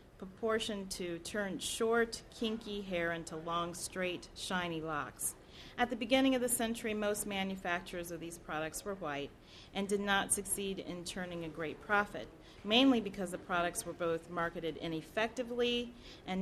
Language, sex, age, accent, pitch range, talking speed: English, female, 40-59, American, 175-220 Hz, 155 wpm